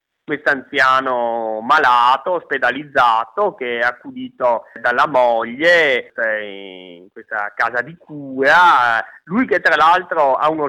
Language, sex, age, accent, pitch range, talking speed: Italian, male, 30-49, native, 130-155 Hz, 105 wpm